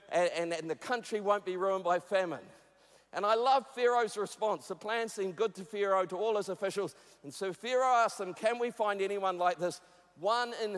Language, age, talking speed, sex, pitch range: English, 50-69, 210 wpm, male, 185-235 Hz